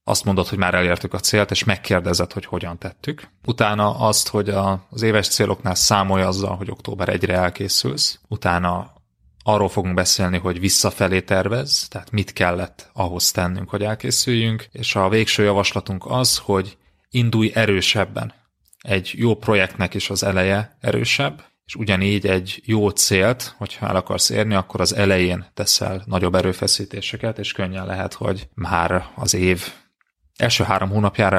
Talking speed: 150 wpm